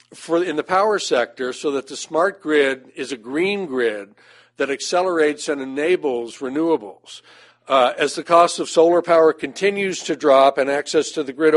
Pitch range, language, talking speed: 135-170 Hz, English, 175 wpm